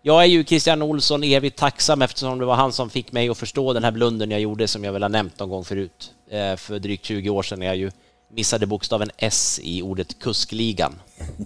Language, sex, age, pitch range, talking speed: Swedish, male, 30-49, 100-135 Hz, 225 wpm